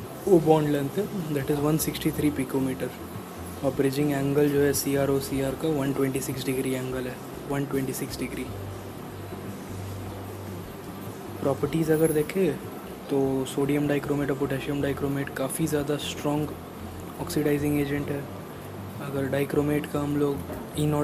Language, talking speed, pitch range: Hindi, 120 wpm, 130-145 Hz